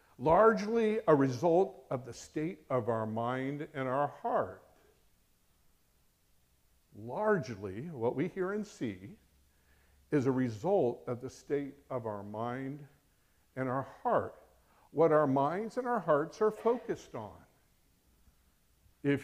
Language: English